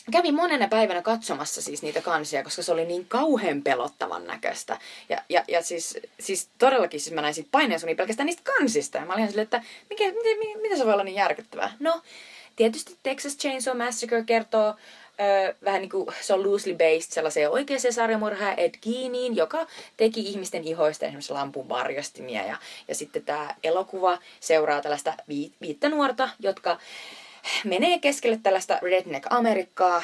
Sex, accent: female, native